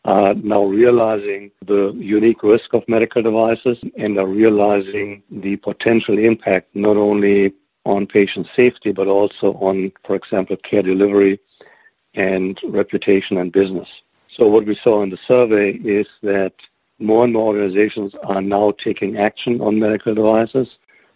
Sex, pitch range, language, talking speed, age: male, 100-110 Hz, English, 145 wpm, 60-79